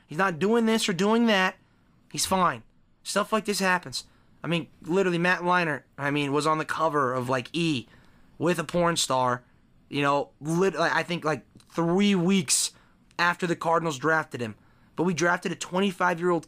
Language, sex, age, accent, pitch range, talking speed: English, male, 30-49, American, 155-205 Hz, 180 wpm